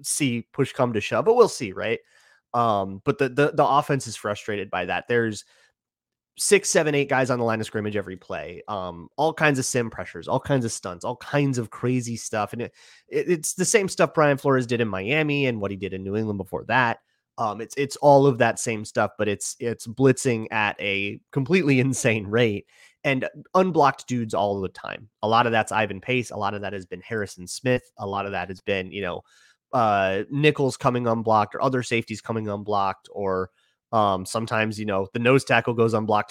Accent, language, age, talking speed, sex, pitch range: American, English, 30-49, 215 wpm, male, 105-140 Hz